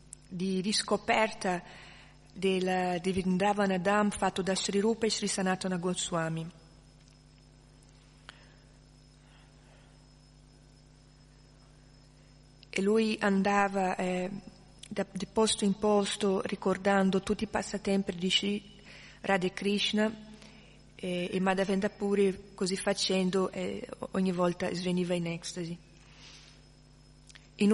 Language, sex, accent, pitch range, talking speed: Italian, female, native, 175-210 Hz, 90 wpm